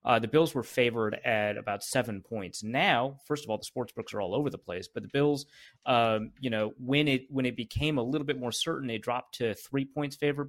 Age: 30-49